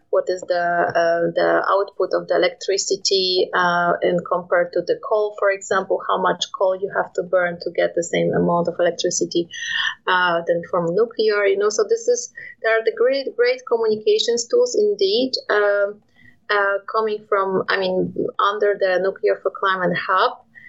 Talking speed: 175 wpm